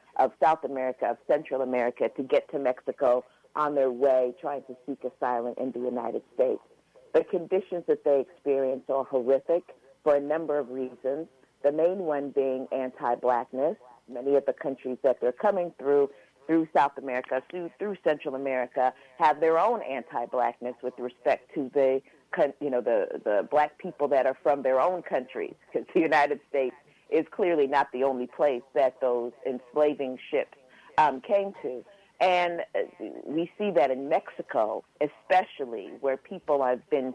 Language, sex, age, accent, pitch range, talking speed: English, female, 50-69, American, 125-165 Hz, 160 wpm